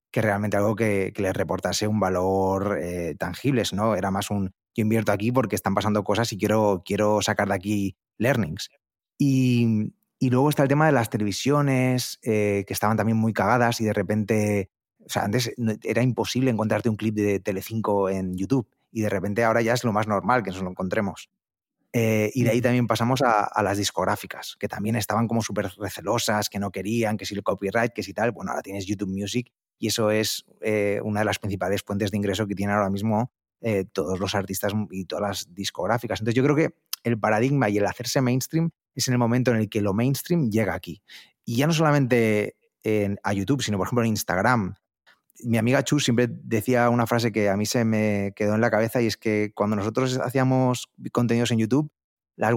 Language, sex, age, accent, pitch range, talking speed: Spanish, male, 30-49, Spanish, 100-120 Hz, 210 wpm